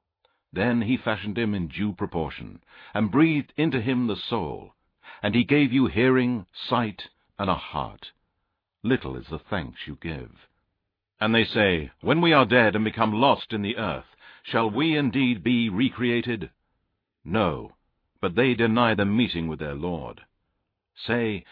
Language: English